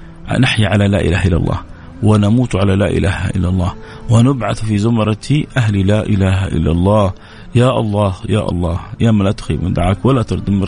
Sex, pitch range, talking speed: male, 85-110 Hz, 180 wpm